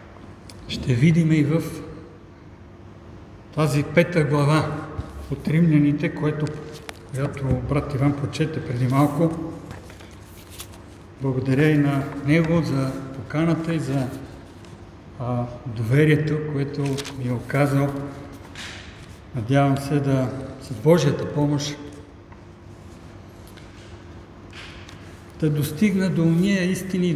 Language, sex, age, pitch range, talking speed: Bulgarian, male, 60-79, 110-155 Hz, 90 wpm